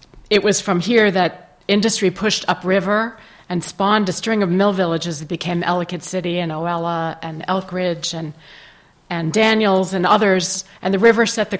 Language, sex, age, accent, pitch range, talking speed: English, female, 40-59, American, 170-205 Hz, 175 wpm